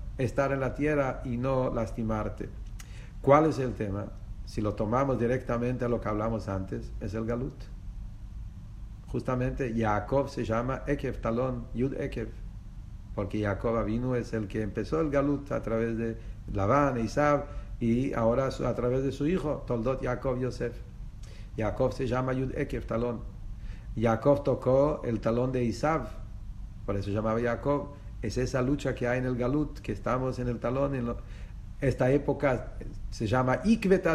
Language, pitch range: English, 105-135 Hz